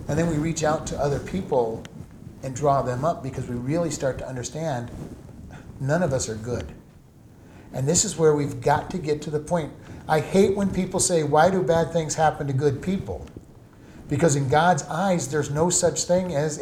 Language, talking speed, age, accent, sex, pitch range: English, 200 wpm, 50-69, American, male, 145-180 Hz